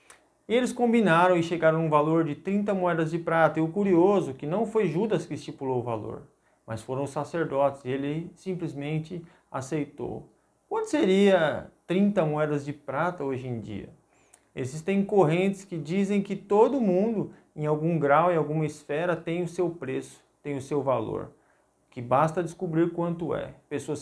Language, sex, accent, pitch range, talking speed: Portuguese, male, Brazilian, 140-185 Hz, 165 wpm